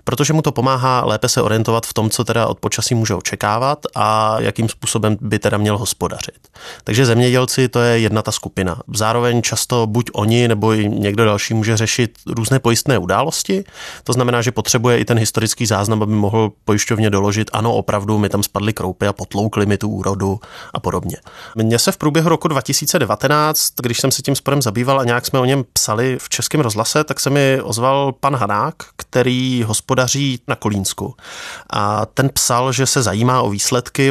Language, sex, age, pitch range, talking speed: Czech, male, 20-39, 105-130 Hz, 185 wpm